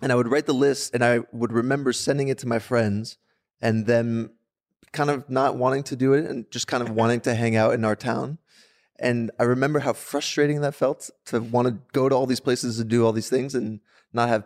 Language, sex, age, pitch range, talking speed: English, male, 30-49, 110-125 Hz, 240 wpm